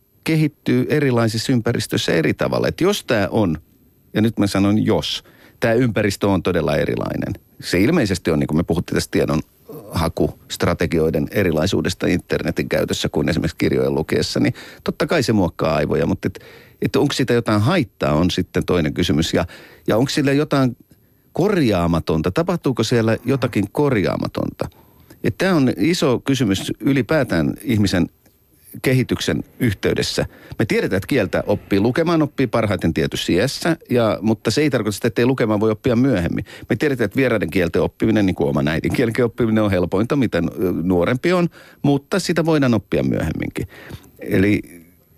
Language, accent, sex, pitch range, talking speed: Finnish, native, male, 95-140 Hz, 155 wpm